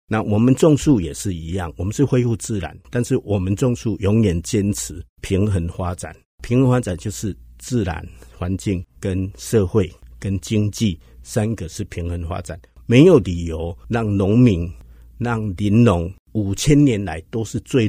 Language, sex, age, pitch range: Chinese, male, 50-69, 90-120 Hz